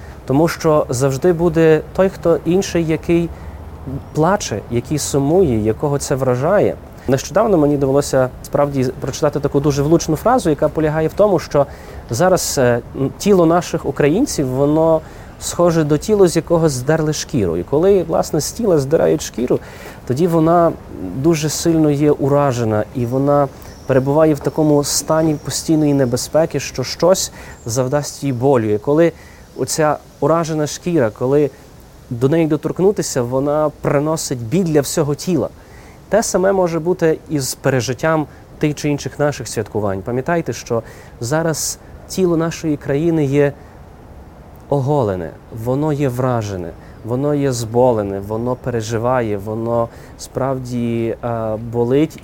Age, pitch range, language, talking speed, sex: 30-49, 120-160 Hz, Ukrainian, 130 wpm, male